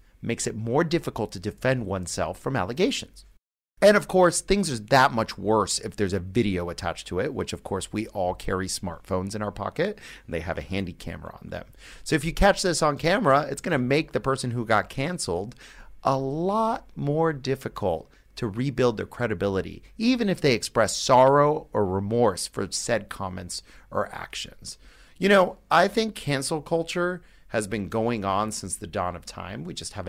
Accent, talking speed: American, 190 wpm